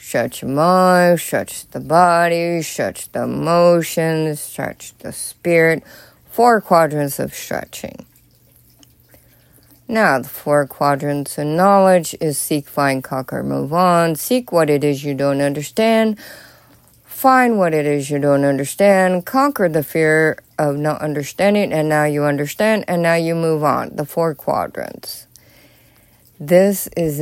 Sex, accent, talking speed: female, American, 135 wpm